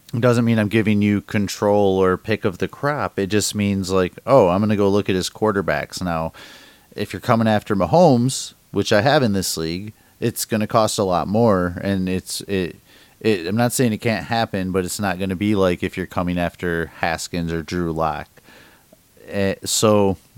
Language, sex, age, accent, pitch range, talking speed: English, male, 30-49, American, 90-110 Hz, 195 wpm